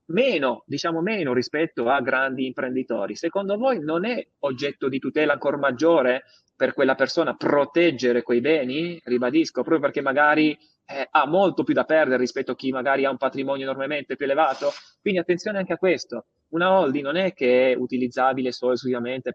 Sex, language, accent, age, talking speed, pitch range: male, Italian, native, 30-49, 170 wpm, 125-165 Hz